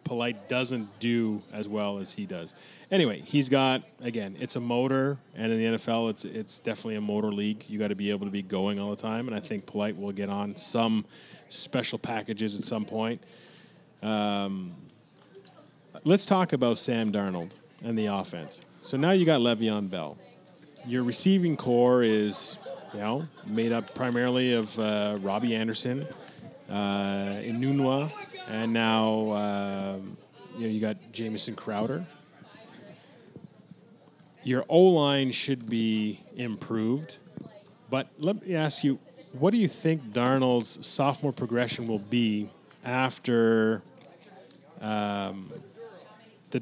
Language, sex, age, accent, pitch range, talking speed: English, male, 30-49, American, 105-140 Hz, 140 wpm